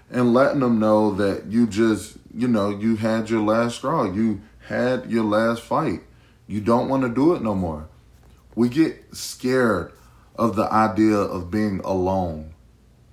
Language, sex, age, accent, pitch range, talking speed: English, male, 20-39, American, 95-120 Hz, 165 wpm